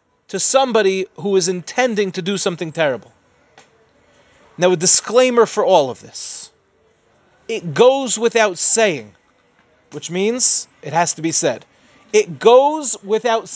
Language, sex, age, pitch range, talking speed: English, male, 30-49, 175-245 Hz, 135 wpm